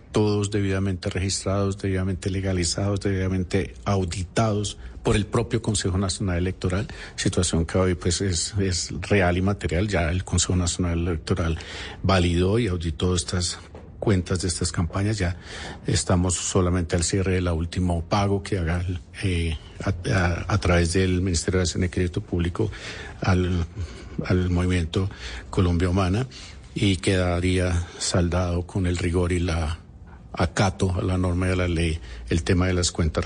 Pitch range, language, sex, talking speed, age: 85-100 Hz, Spanish, male, 145 wpm, 50-69